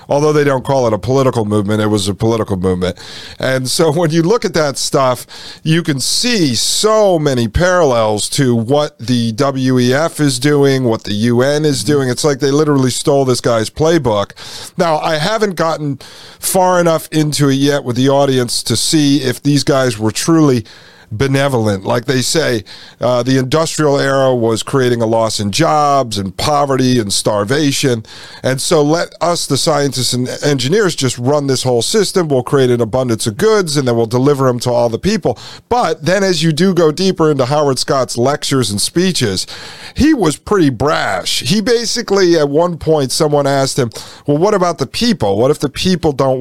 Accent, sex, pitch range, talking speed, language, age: American, male, 120-155 Hz, 190 wpm, English, 50-69